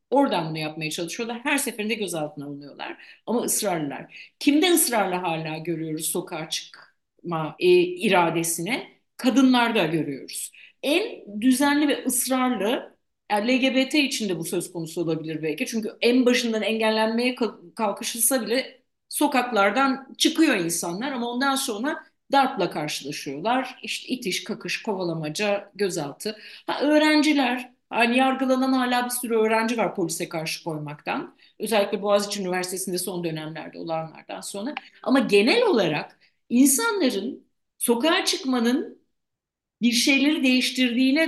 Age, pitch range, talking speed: 50-69, 180-265 Hz, 115 wpm